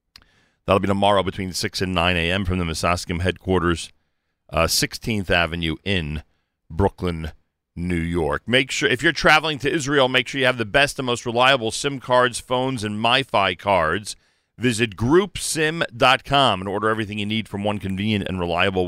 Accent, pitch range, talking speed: American, 90-115 Hz, 170 wpm